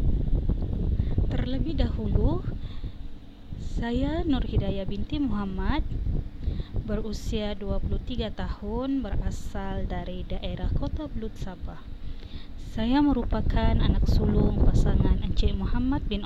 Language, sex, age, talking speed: Malay, female, 20-39, 90 wpm